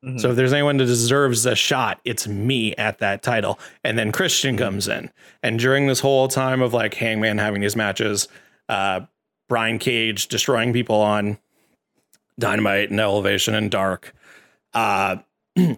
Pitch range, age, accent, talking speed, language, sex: 110-130 Hz, 30-49, American, 155 wpm, English, male